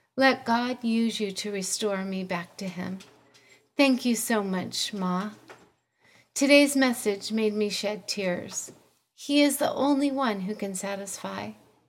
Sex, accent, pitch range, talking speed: female, American, 190-255 Hz, 145 wpm